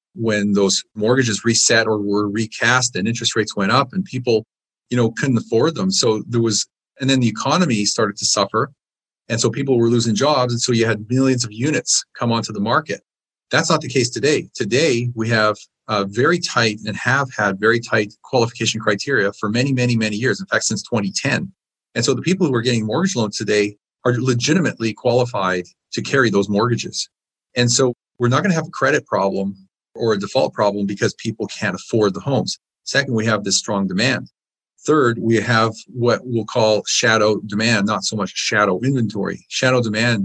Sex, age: male, 40-59